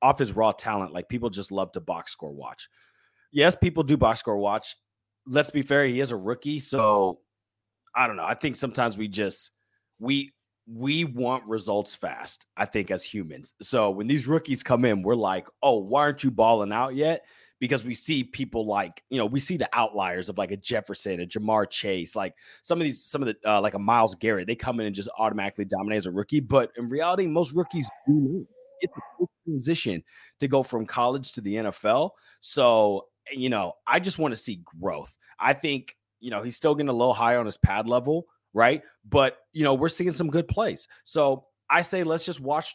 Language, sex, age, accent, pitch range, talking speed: English, male, 30-49, American, 110-150 Hz, 215 wpm